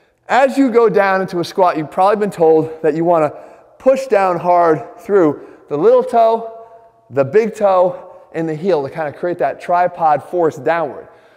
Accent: American